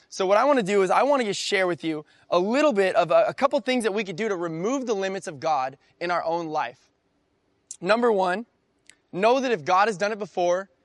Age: 20-39